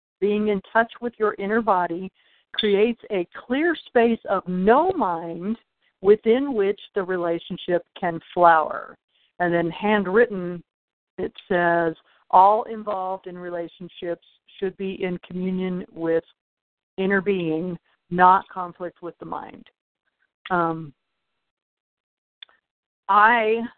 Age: 50-69